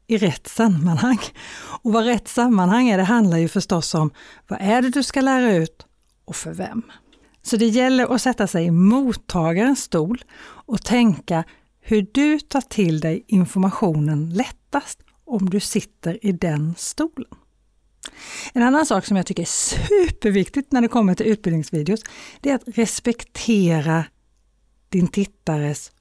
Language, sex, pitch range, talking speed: Swedish, female, 170-250 Hz, 150 wpm